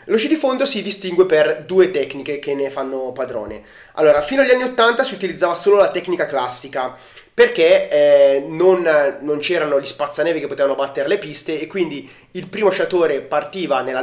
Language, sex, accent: Italian, male, native